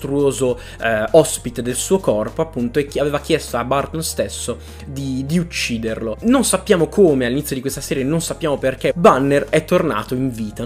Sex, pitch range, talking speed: male, 125-155 Hz, 175 wpm